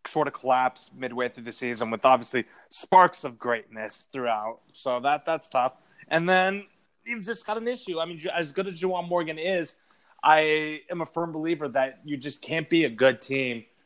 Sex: male